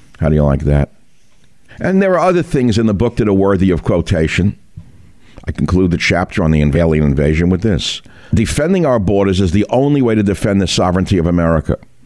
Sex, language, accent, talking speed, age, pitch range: male, English, American, 205 wpm, 50-69, 80-110 Hz